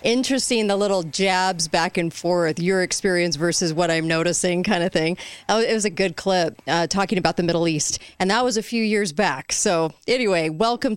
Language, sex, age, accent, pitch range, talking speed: English, female, 30-49, American, 170-220 Hz, 200 wpm